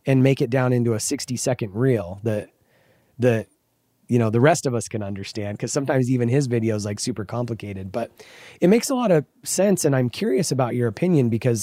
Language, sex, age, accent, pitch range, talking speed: English, male, 30-49, American, 115-145 Hz, 215 wpm